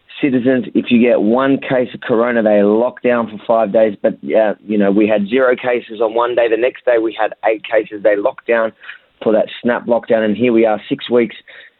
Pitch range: 110-130 Hz